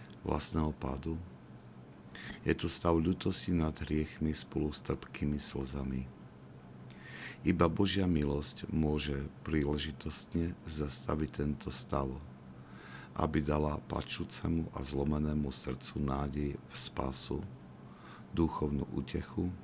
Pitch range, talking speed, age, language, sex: 65-80 Hz, 90 wpm, 50-69, Slovak, male